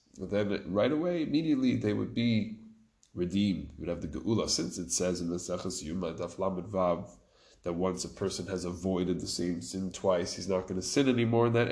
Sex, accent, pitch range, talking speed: male, American, 90-115 Hz, 200 wpm